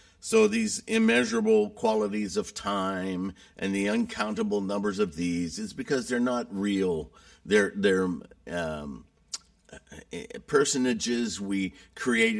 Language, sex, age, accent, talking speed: English, male, 50-69, American, 110 wpm